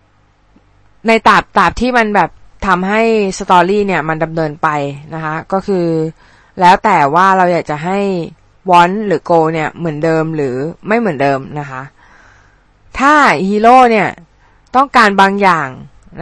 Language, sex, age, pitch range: Thai, female, 20-39, 150-205 Hz